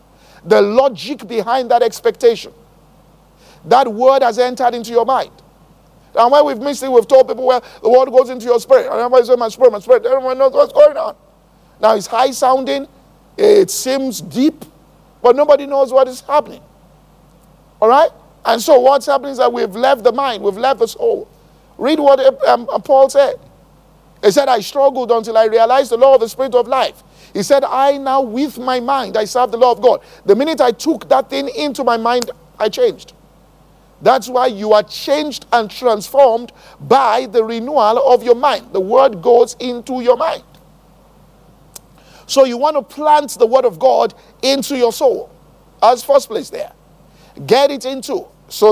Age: 50-69